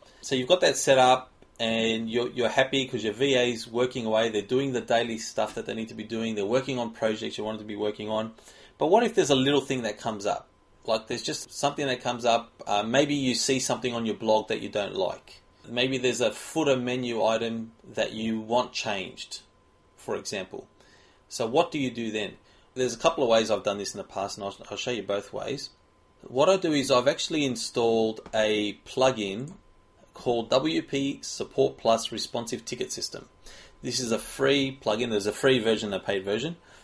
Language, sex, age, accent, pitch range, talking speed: English, male, 30-49, Australian, 110-130 Hz, 210 wpm